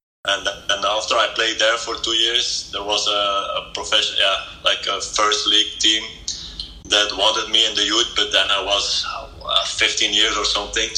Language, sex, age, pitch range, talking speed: English, male, 20-39, 95-115 Hz, 190 wpm